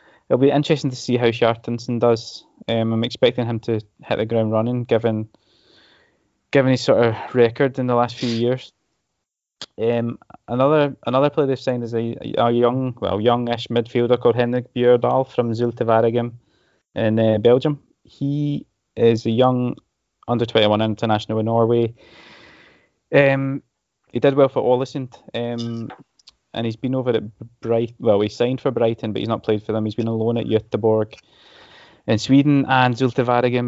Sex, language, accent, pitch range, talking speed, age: male, English, British, 110-125 Hz, 165 wpm, 20-39